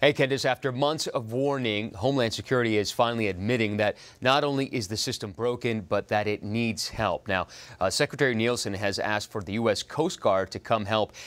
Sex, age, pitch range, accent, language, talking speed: male, 30-49, 105-130 Hz, American, English, 195 wpm